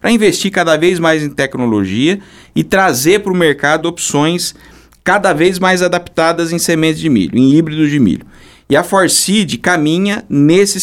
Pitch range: 130-180 Hz